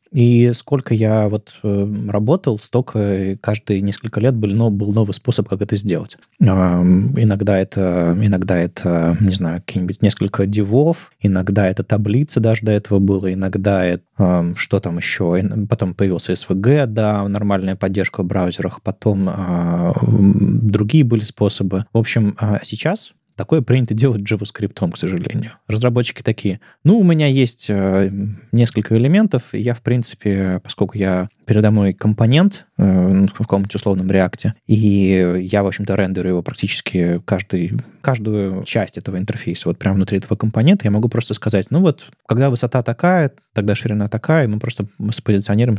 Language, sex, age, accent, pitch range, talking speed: Russian, male, 20-39, native, 95-115 Hz, 155 wpm